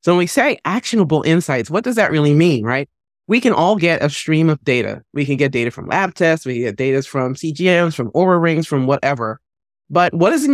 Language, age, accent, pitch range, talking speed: English, 30-49, American, 130-175 Hz, 235 wpm